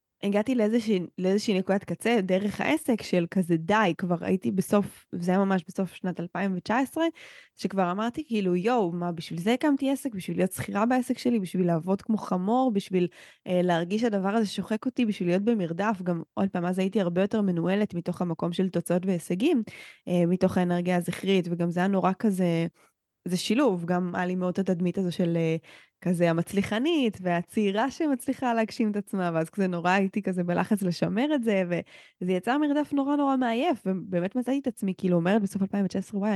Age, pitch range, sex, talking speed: 20-39, 175-220 Hz, female, 180 wpm